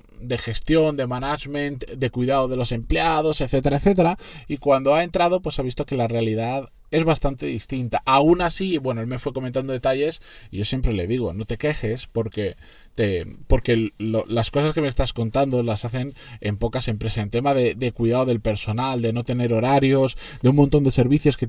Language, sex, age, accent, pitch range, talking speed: Spanish, male, 20-39, Spanish, 120-150 Hz, 200 wpm